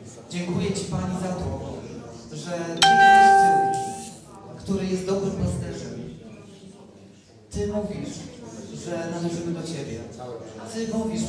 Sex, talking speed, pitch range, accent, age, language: male, 100 wpm, 155-195 Hz, native, 40-59, Polish